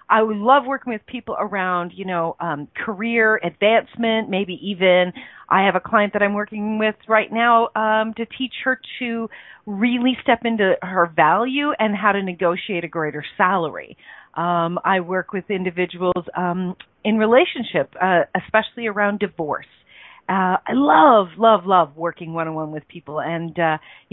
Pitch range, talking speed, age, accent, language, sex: 170-220 Hz, 155 wpm, 40-59, American, English, female